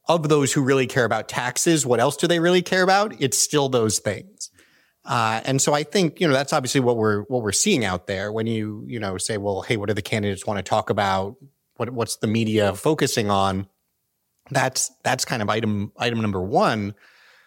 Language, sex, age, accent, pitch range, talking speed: English, male, 30-49, American, 100-130 Hz, 215 wpm